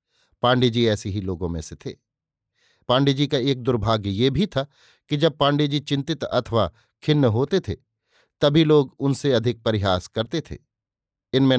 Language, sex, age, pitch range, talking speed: Hindi, male, 50-69, 115-145 Hz, 155 wpm